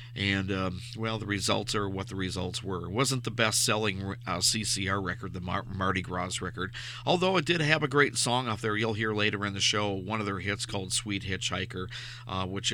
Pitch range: 95-115 Hz